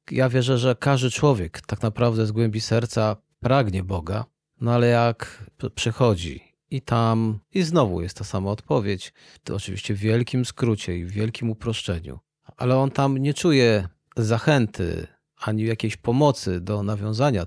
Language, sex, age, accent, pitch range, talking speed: Polish, male, 40-59, native, 105-130 Hz, 150 wpm